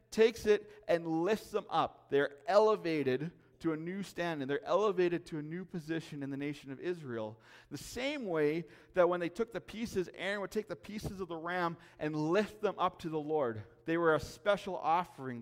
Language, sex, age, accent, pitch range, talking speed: English, male, 40-59, American, 140-195 Hz, 200 wpm